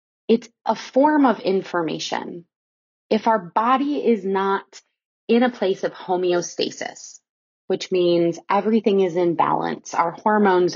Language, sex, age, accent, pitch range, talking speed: English, female, 20-39, American, 180-230 Hz, 130 wpm